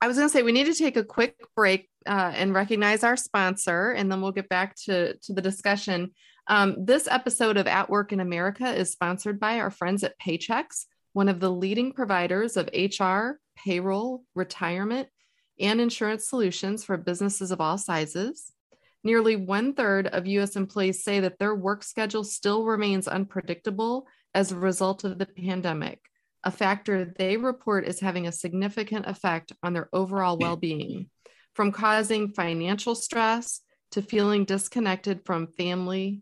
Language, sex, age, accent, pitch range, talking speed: English, female, 30-49, American, 185-220 Hz, 165 wpm